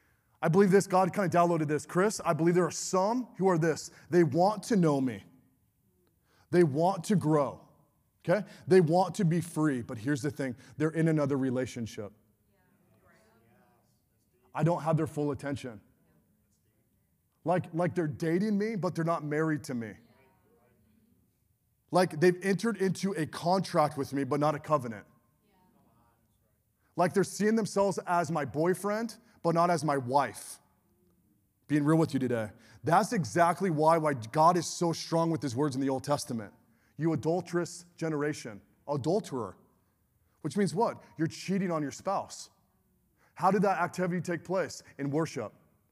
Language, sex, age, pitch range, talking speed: English, male, 20-39, 130-180 Hz, 160 wpm